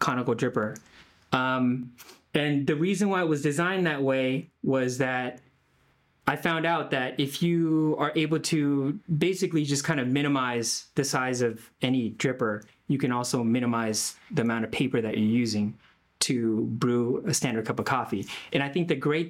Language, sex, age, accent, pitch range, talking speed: English, male, 20-39, American, 120-150 Hz, 175 wpm